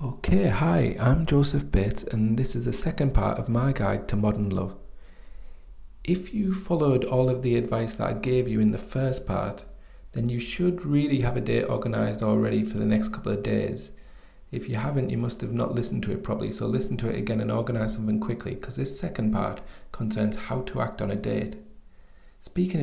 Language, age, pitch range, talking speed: English, 30-49, 105-130 Hz, 210 wpm